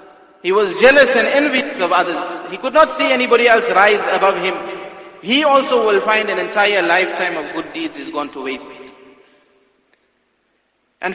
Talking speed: 165 wpm